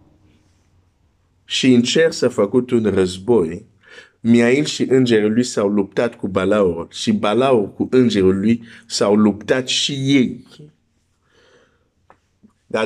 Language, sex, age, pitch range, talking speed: Romanian, male, 50-69, 105-130 Hz, 115 wpm